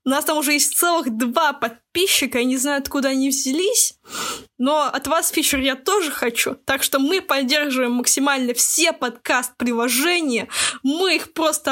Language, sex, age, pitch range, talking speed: Russian, female, 20-39, 240-290 Hz, 160 wpm